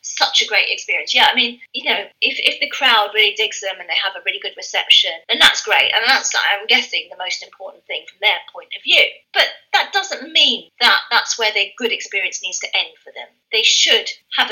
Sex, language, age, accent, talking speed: female, English, 30-49, British, 235 wpm